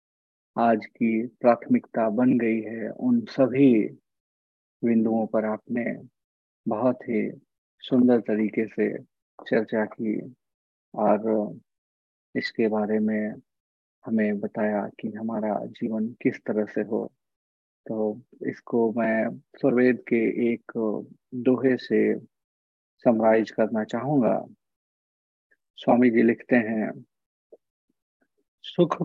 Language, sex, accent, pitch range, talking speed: Hindi, male, native, 110-125 Hz, 95 wpm